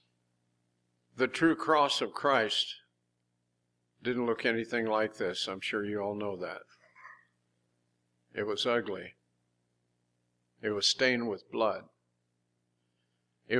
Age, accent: 60-79, American